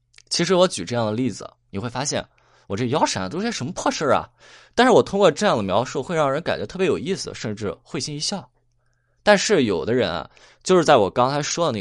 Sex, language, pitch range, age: male, Chinese, 110-170 Hz, 20-39